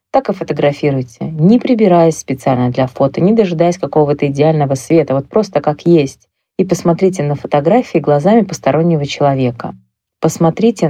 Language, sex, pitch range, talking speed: Russian, female, 140-180 Hz, 140 wpm